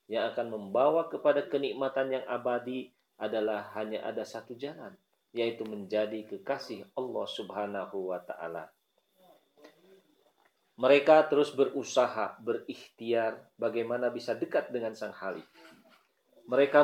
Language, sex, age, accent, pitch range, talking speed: Indonesian, male, 40-59, native, 120-150 Hz, 105 wpm